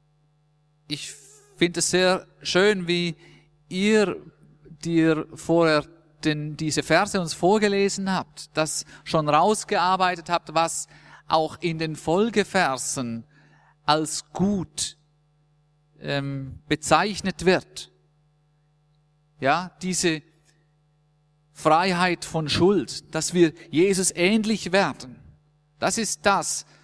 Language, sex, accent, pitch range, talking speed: German, male, German, 150-175 Hz, 95 wpm